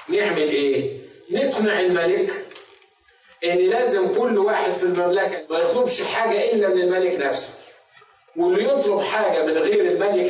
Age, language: 50-69, Arabic